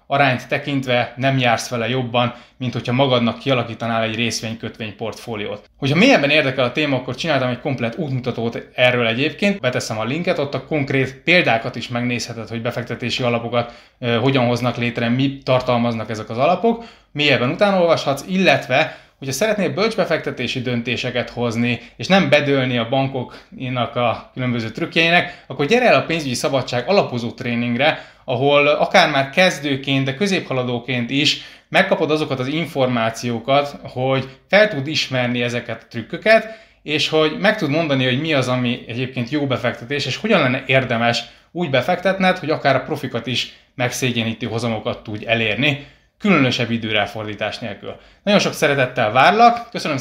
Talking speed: 150 wpm